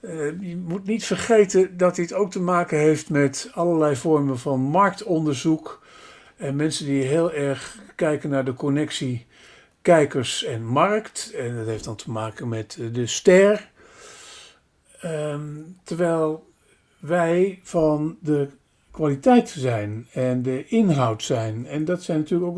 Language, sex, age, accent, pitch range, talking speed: Dutch, male, 50-69, Dutch, 145-200 Hz, 140 wpm